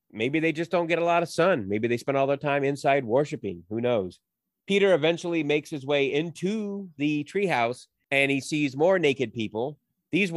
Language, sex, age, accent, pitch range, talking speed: English, male, 30-49, American, 120-155 Hz, 195 wpm